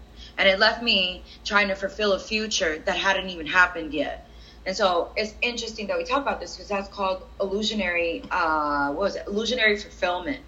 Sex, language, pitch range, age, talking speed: female, English, 175-225 Hz, 30-49, 190 wpm